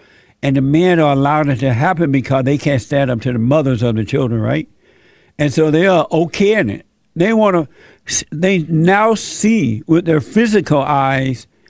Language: English